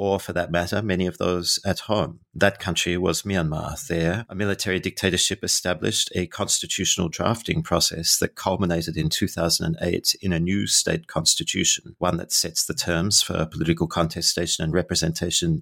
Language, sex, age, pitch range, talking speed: English, male, 40-59, 85-95 Hz, 160 wpm